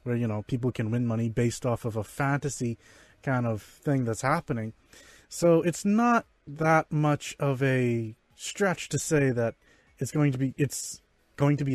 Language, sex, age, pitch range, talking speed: English, male, 20-39, 120-160 Hz, 185 wpm